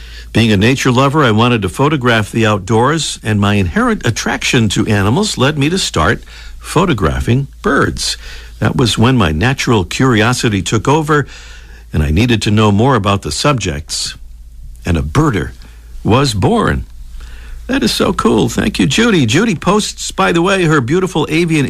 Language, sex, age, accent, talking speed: English, male, 60-79, American, 165 wpm